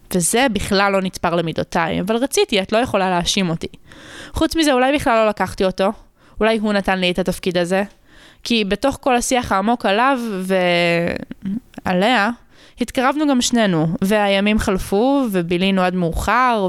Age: 20-39